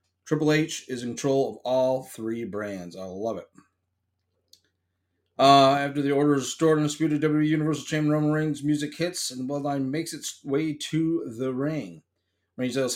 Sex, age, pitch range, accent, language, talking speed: male, 30-49, 110-135 Hz, American, English, 180 wpm